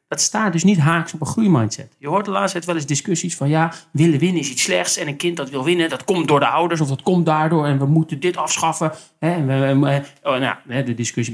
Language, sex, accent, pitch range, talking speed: Dutch, male, Dutch, 140-175 Hz, 270 wpm